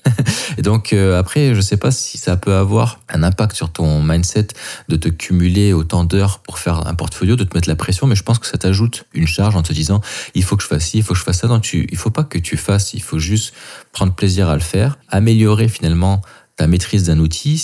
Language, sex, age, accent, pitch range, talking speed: French, male, 20-39, French, 80-110 Hz, 260 wpm